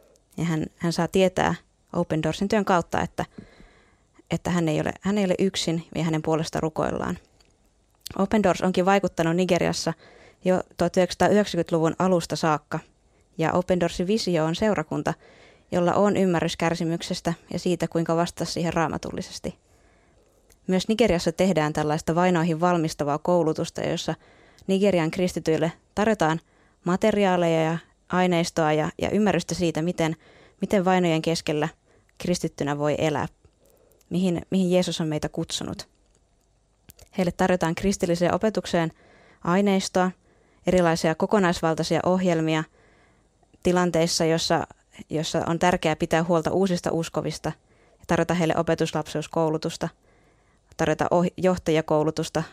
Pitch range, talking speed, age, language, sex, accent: 160-180 Hz, 115 wpm, 20-39, Finnish, female, native